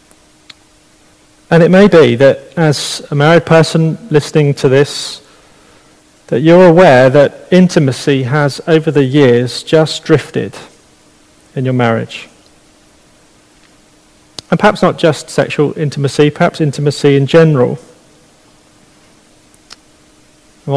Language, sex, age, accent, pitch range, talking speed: English, male, 40-59, British, 135-155 Hz, 105 wpm